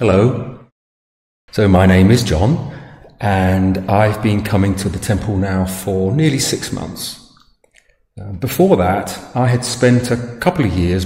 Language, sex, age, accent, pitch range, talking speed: English, male, 40-59, British, 100-125 Hz, 145 wpm